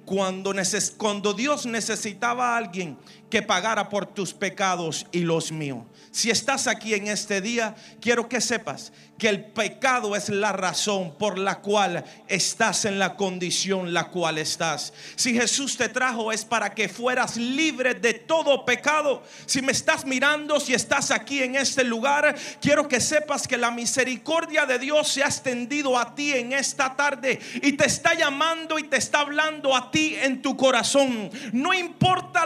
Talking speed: 170 wpm